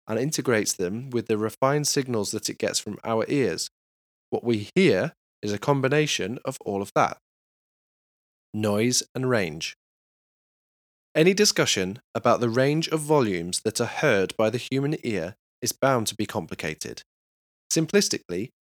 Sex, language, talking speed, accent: male, English, 150 wpm, British